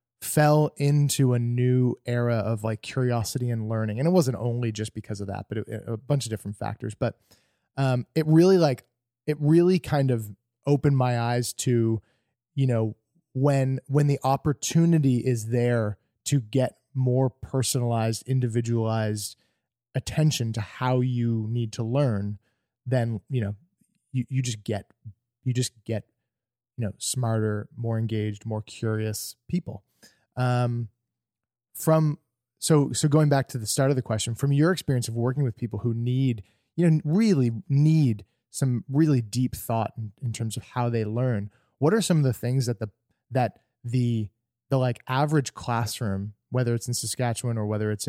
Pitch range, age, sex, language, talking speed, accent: 110-130 Hz, 20-39, male, English, 165 wpm, American